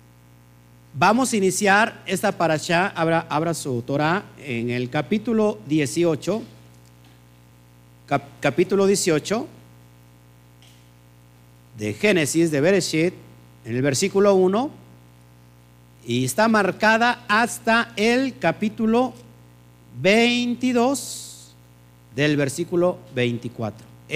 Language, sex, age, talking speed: Spanish, male, 50-69, 80 wpm